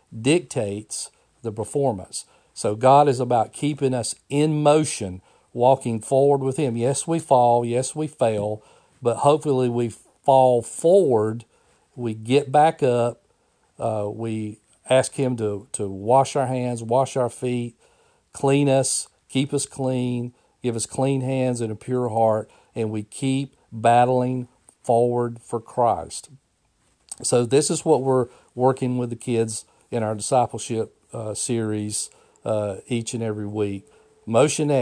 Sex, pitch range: male, 115-135 Hz